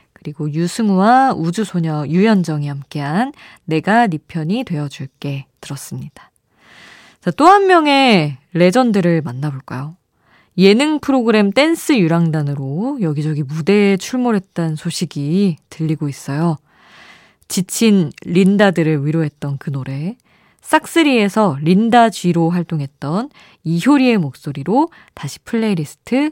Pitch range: 155-230 Hz